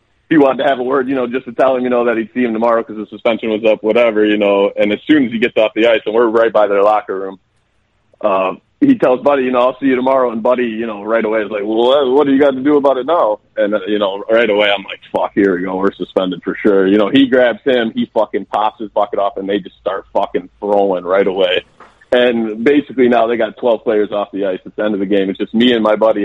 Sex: male